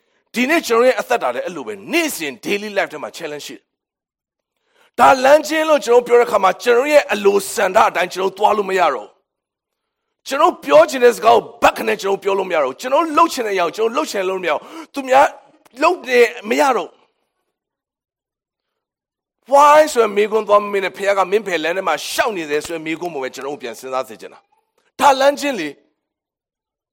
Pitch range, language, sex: 210-300 Hz, English, male